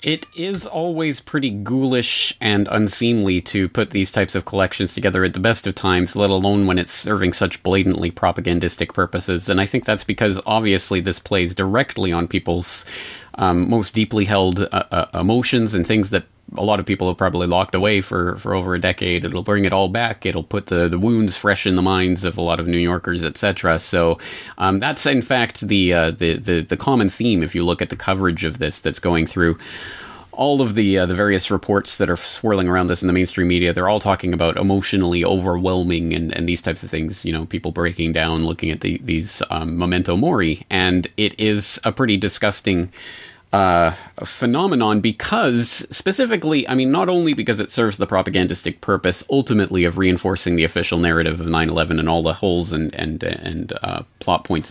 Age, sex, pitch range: 30-49, male, 85-105 Hz